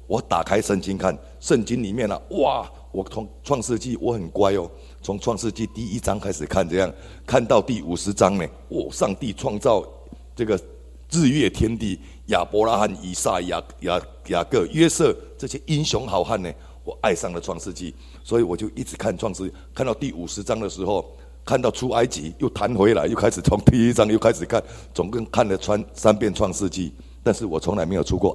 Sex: male